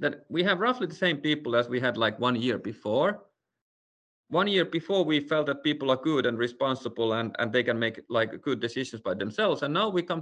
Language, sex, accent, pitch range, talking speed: English, male, Finnish, 125-175 Hz, 230 wpm